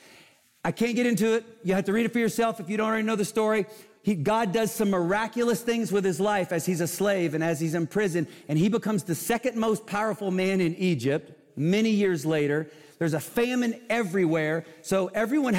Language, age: English, 40-59